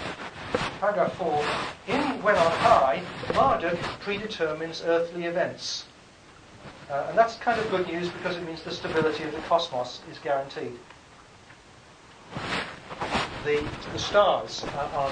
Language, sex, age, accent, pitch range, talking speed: English, male, 40-59, British, 145-185 Hz, 125 wpm